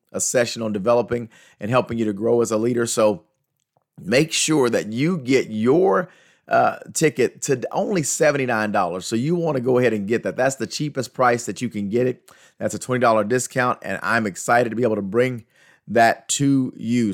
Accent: American